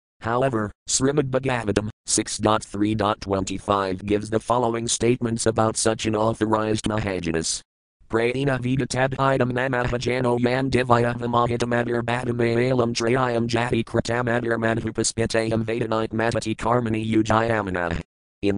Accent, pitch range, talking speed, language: American, 105-125 Hz, 45 wpm, English